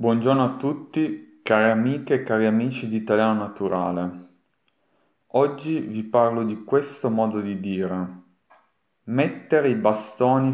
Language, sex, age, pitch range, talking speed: Italian, male, 40-59, 110-155 Hz, 125 wpm